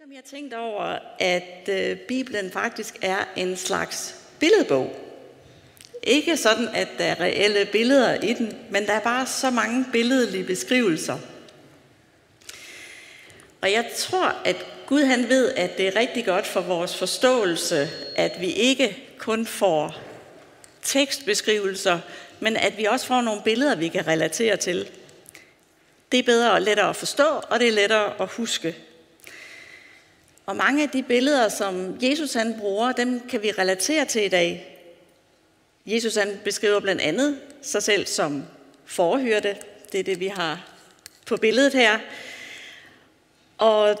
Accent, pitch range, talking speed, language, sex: native, 190-255 Hz, 145 wpm, Danish, female